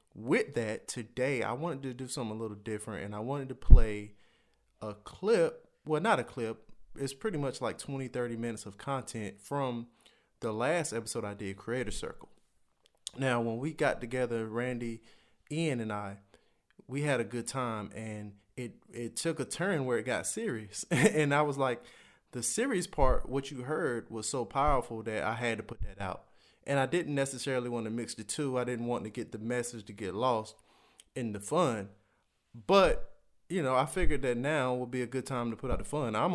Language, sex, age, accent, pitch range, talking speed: English, male, 20-39, American, 115-140 Hz, 205 wpm